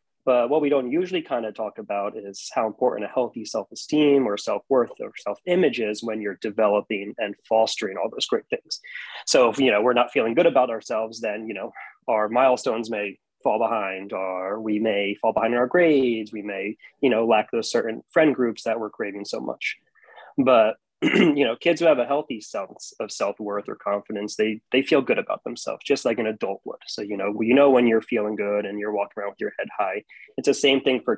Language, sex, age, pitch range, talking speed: English, male, 20-39, 105-130 Hz, 220 wpm